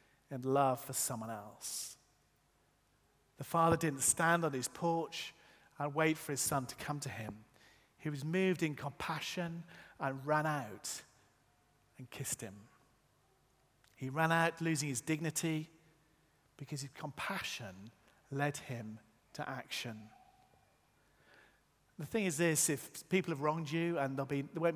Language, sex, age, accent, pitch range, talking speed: English, male, 40-59, British, 125-160 Hz, 140 wpm